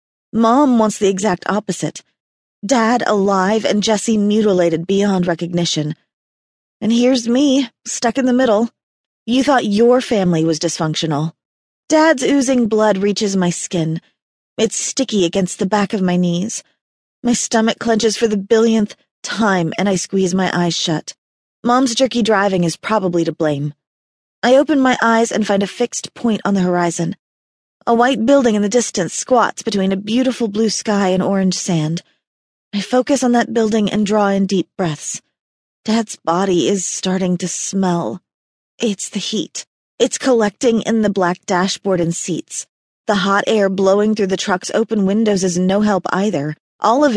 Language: English